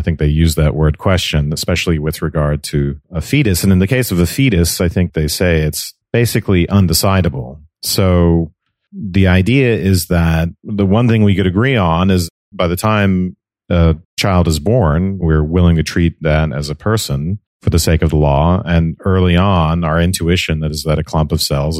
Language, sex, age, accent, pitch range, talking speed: English, male, 40-59, American, 80-95 Hz, 200 wpm